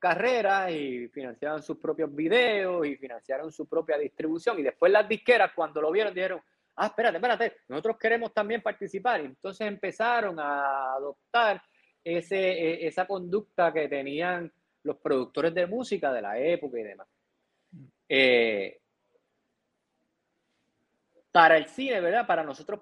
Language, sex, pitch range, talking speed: Spanish, male, 150-205 Hz, 135 wpm